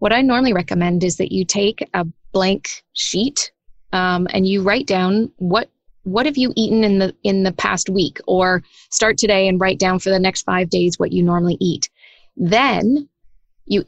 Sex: female